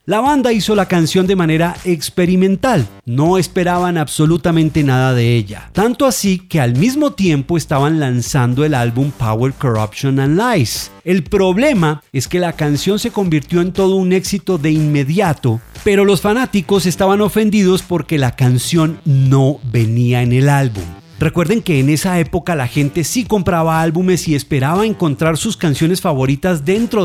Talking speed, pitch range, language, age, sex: 160 wpm, 135-185 Hz, English, 40-59, male